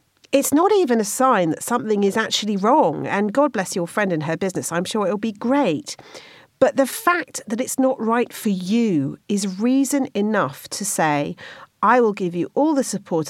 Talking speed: 200 wpm